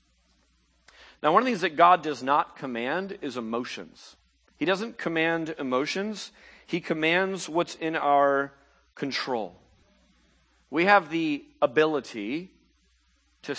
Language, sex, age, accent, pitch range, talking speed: English, male, 40-59, American, 120-175 Hz, 120 wpm